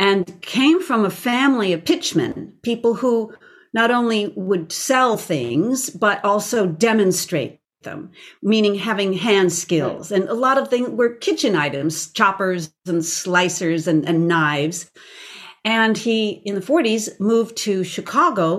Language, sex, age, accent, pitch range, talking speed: English, female, 50-69, American, 180-240 Hz, 140 wpm